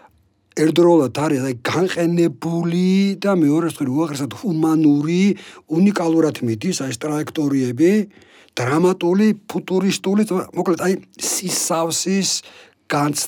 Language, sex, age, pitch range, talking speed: English, male, 60-79, 125-170 Hz, 115 wpm